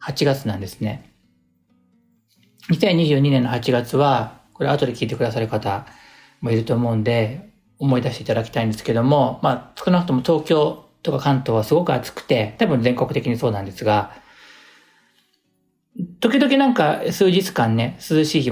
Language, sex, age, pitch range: Japanese, male, 40-59, 110-165 Hz